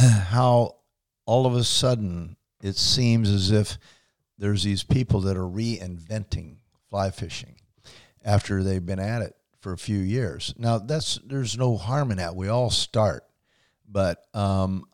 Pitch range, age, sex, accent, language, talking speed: 100-120 Hz, 50-69, male, American, English, 155 wpm